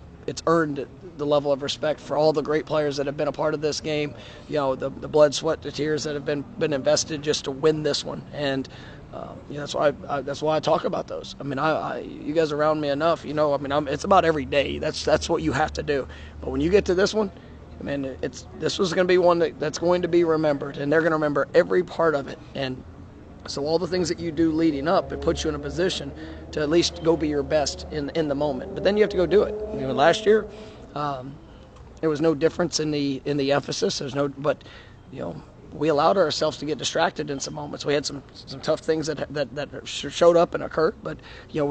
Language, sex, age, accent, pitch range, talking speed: English, male, 30-49, American, 140-160 Hz, 270 wpm